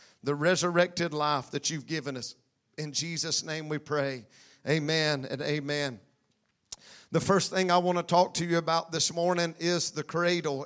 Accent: American